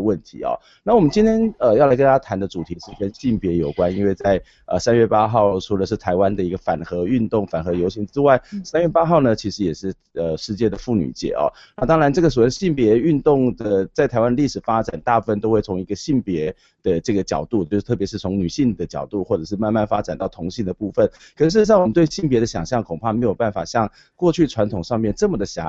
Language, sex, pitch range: Chinese, male, 90-125 Hz